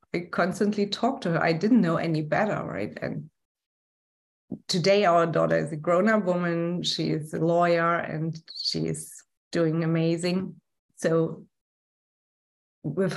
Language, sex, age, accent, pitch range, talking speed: English, female, 30-49, German, 155-185 Hz, 140 wpm